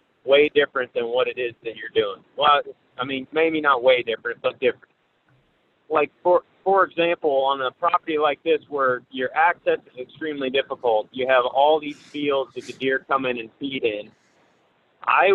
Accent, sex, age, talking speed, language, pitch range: American, male, 40-59, 185 wpm, English, 125-155 Hz